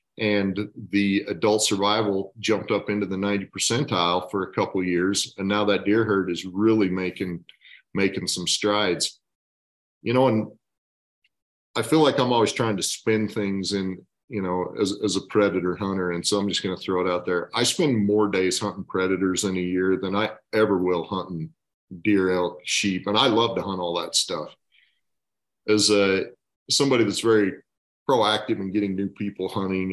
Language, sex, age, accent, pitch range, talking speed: English, male, 40-59, American, 90-105 Hz, 180 wpm